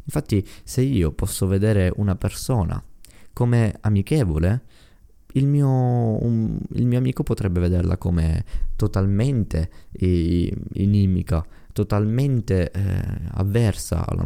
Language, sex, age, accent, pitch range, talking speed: Italian, male, 20-39, native, 85-105 Hz, 95 wpm